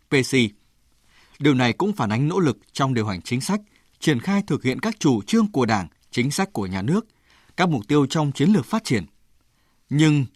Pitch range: 120-165 Hz